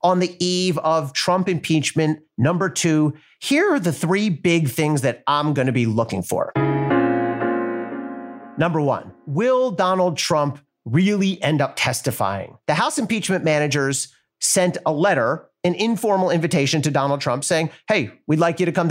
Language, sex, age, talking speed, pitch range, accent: English, male, 40-59, 155 wpm, 135-185 Hz, American